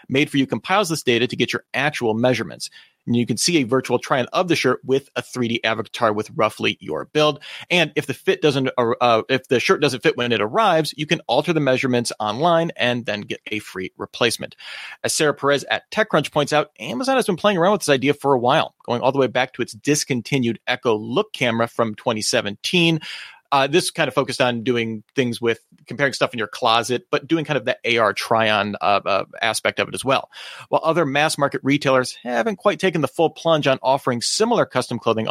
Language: English